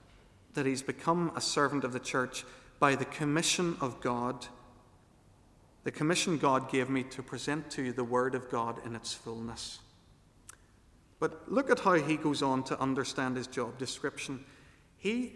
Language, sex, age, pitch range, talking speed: English, male, 40-59, 120-145 Hz, 165 wpm